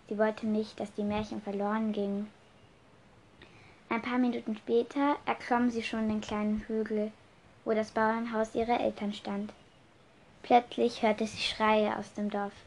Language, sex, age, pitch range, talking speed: German, female, 10-29, 210-225 Hz, 150 wpm